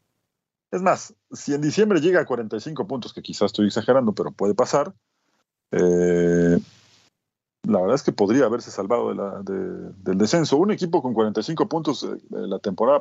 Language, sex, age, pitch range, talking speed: Spanish, male, 40-59, 105-155 Hz, 155 wpm